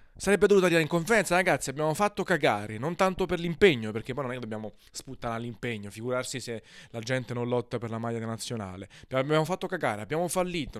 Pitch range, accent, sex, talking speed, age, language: 120-155 Hz, native, male, 200 wpm, 30-49, Italian